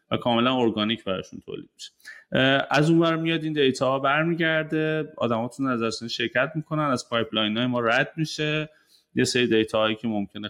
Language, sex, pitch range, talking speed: Persian, male, 100-125 Hz, 165 wpm